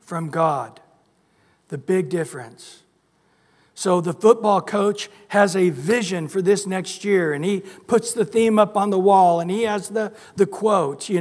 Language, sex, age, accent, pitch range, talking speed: English, male, 60-79, American, 175-215 Hz, 170 wpm